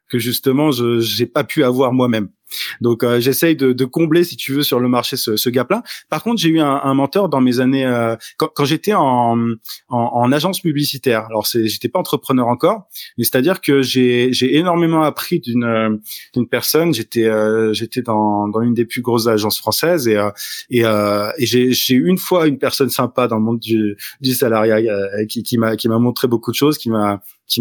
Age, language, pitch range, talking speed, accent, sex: 20-39, French, 115-140 Hz, 220 wpm, French, male